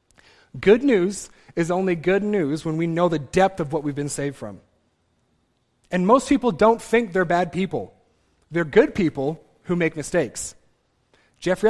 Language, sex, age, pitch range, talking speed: English, male, 30-49, 135-185 Hz, 165 wpm